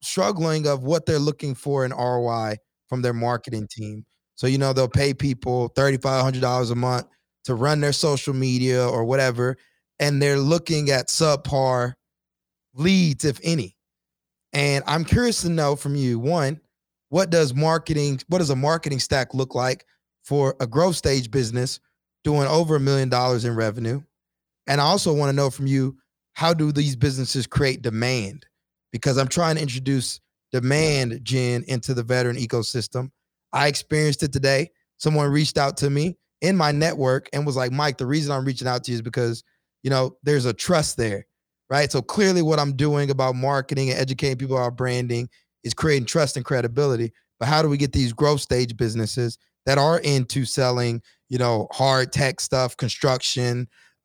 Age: 20-39